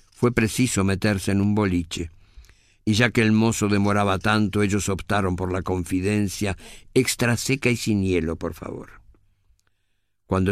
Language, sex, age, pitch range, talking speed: Spanish, male, 50-69, 95-115 Hz, 150 wpm